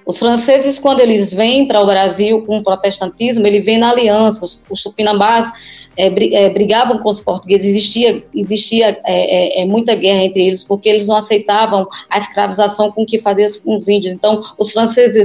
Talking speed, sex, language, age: 190 wpm, female, Portuguese, 20-39